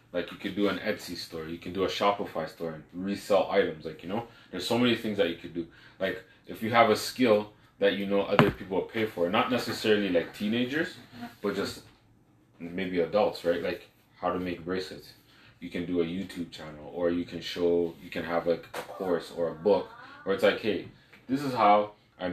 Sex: male